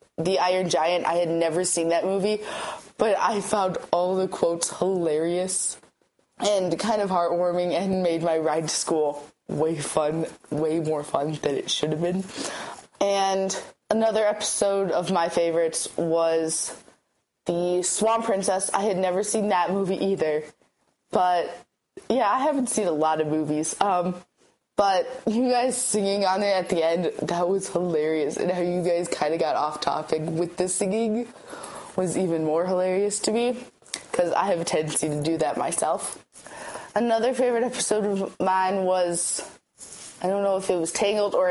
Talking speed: 170 wpm